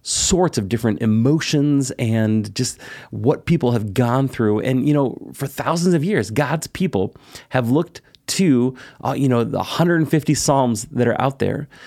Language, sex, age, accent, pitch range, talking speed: English, male, 30-49, American, 110-145 Hz, 165 wpm